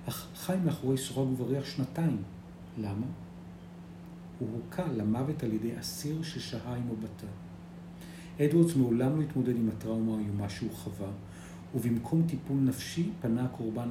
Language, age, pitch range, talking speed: Hebrew, 50-69, 100-135 Hz, 135 wpm